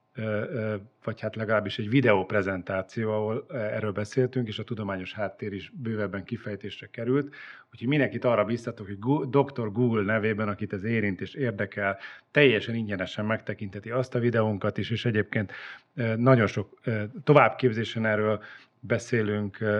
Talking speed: 135 wpm